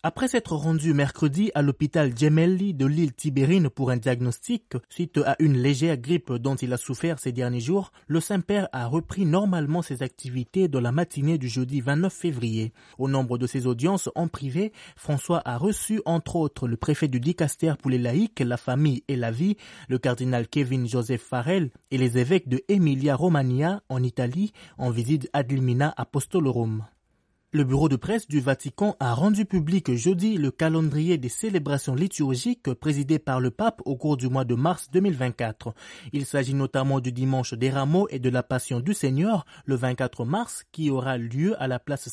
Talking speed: 180 wpm